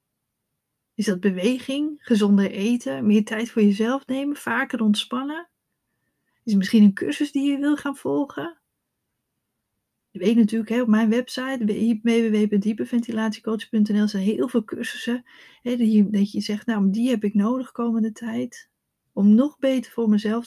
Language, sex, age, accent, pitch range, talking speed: Dutch, female, 40-59, Dutch, 205-250 Hz, 140 wpm